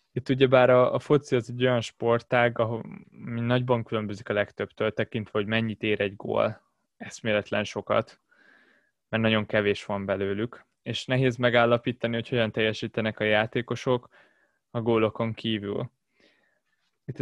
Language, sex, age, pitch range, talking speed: Hungarian, male, 20-39, 105-125 Hz, 135 wpm